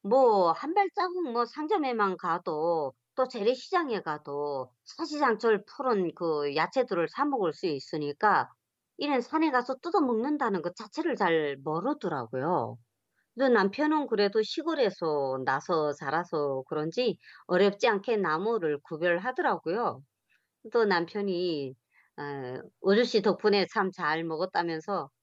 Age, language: 40-59, Korean